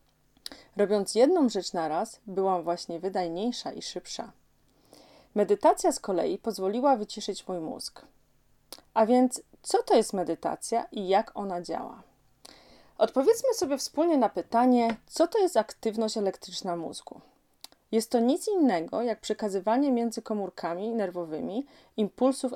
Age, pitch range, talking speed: 30-49, 190-255 Hz, 130 wpm